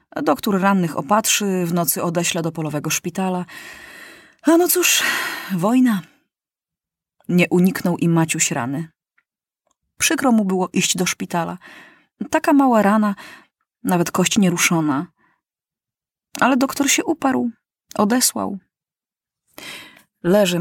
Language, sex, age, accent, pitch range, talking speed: Polish, female, 30-49, native, 185-270 Hz, 105 wpm